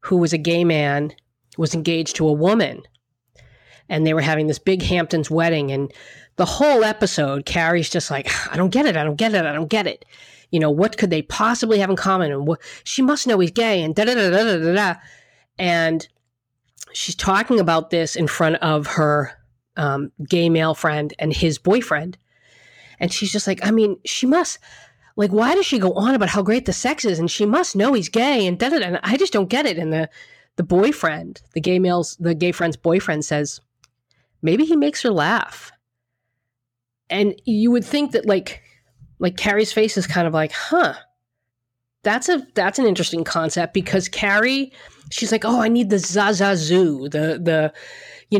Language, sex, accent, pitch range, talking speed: English, female, American, 155-210 Hz, 200 wpm